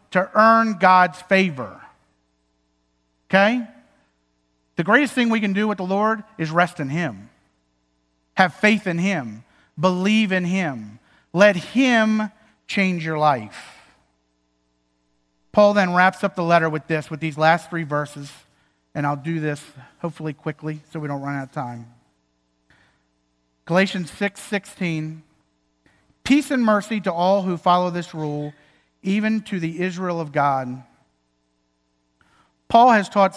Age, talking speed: 50-69, 140 wpm